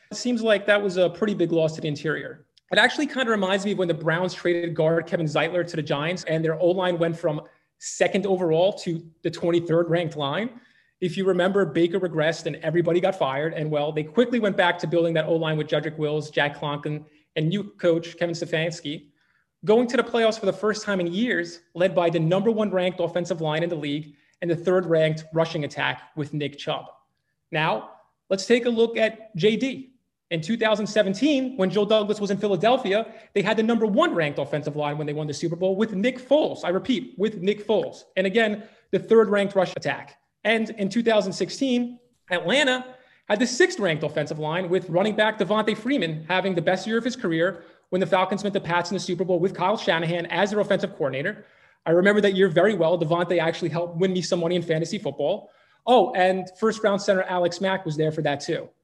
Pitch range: 165-210 Hz